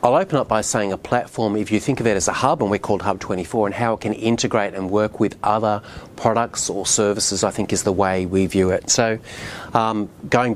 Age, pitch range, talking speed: 40-59, 100-115 Hz, 245 wpm